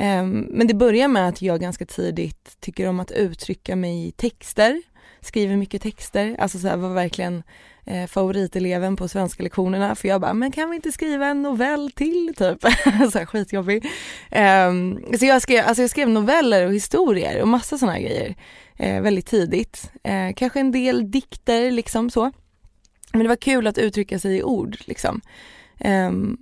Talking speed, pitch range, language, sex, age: 165 wpm, 185-245 Hz, Swedish, female, 20-39